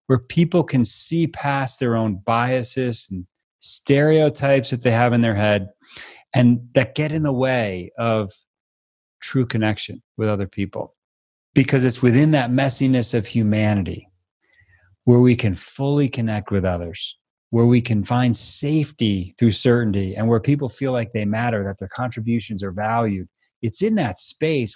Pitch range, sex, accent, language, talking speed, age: 105-130 Hz, male, American, English, 160 wpm, 40-59